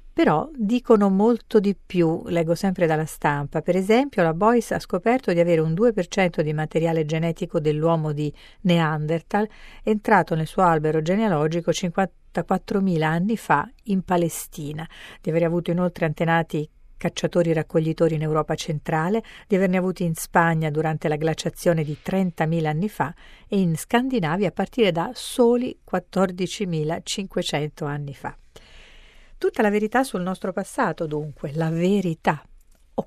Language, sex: Italian, female